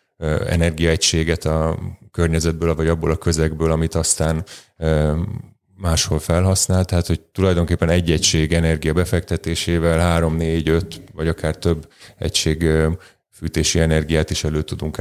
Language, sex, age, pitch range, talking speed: Hungarian, male, 30-49, 80-90 Hz, 110 wpm